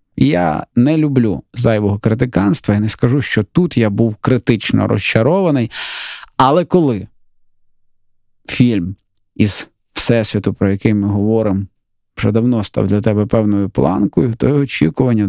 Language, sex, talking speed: Ukrainian, male, 125 wpm